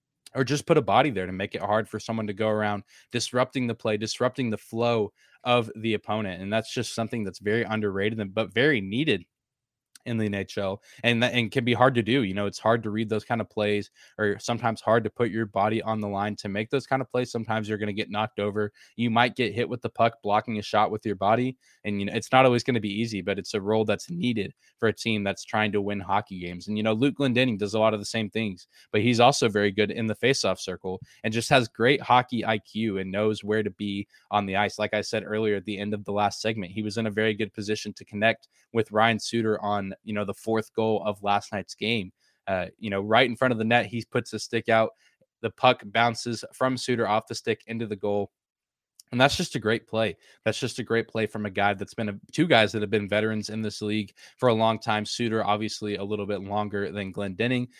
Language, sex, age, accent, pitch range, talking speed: English, male, 20-39, American, 105-115 Hz, 255 wpm